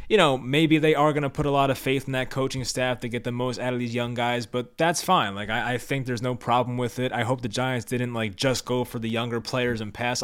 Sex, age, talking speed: male, 20-39, 300 wpm